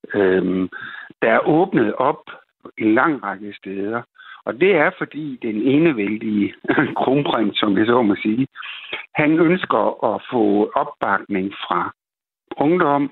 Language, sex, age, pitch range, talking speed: Danish, male, 60-79, 105-140 Hz, 130 wpm